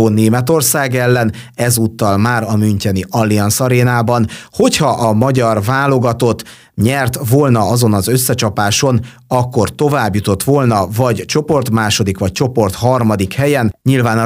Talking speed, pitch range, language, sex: 125 wpm, 105-130 Hz, Hungarian, male